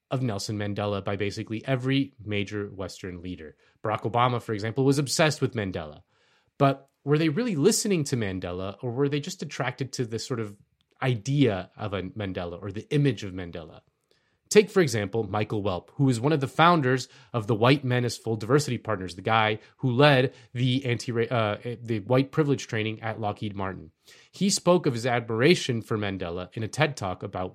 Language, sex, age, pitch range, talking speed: English, male, 30-49, 110-140 Hz, 190 wpm